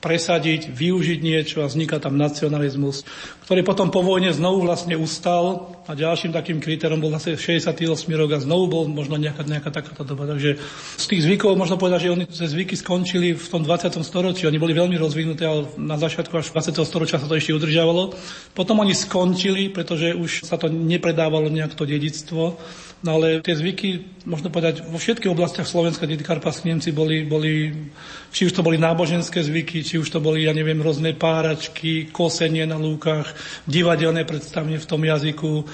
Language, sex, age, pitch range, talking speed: Slovak, male, 40-59, 155-170 Hz, 175 wpm